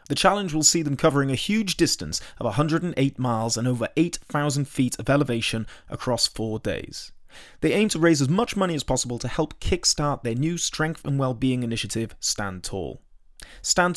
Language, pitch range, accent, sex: English, 120-165 Hz, British, male